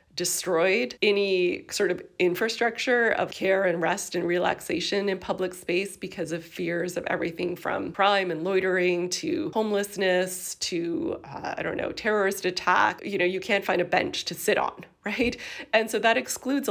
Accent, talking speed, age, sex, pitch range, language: American, 170 wpm, 30-49, female, 180-220 Hz, English